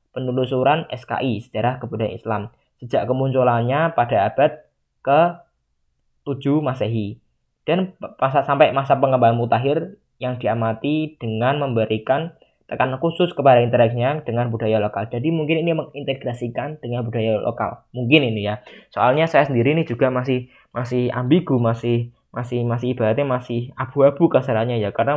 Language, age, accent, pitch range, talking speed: Indonesian, 10-29, native, 115-145 Hz, 130 wpm